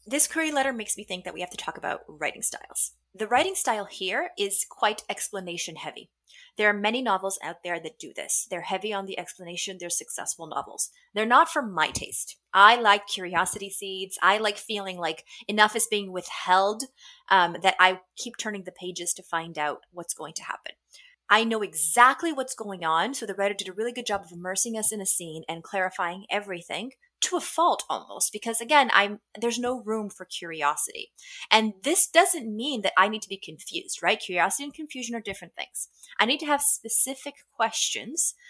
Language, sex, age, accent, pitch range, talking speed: English, female, 30-49, American, 185-265 Hz, 200 wpm